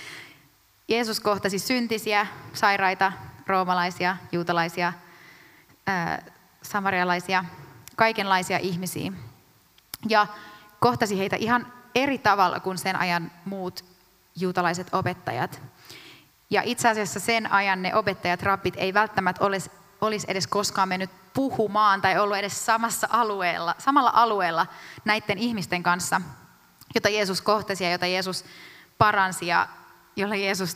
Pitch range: 180-210 Hz